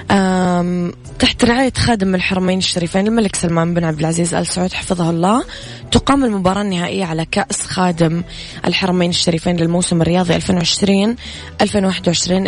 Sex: female